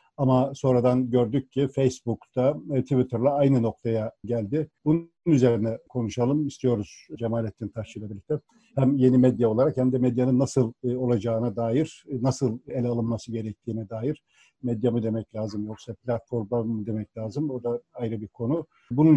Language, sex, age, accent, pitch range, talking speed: Turkish, male, 50-69, native, 120-145 Hz, 145 wpm